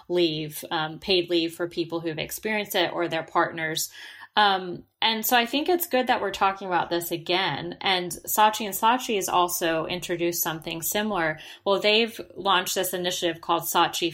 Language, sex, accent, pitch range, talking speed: English, female, American, 165-195 Hz, 175 wpm